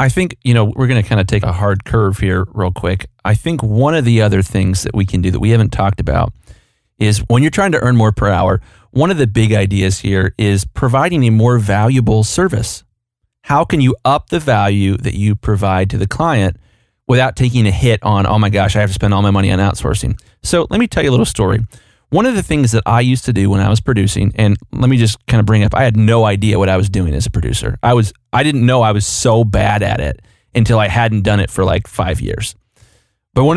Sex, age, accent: male, 30-49, American